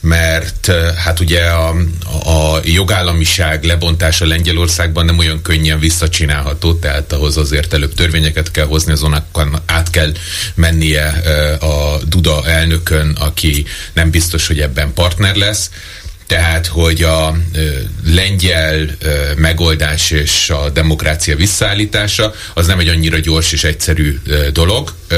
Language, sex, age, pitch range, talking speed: Hungarian, male, 30-49, 80-90 Hz, 120 wpm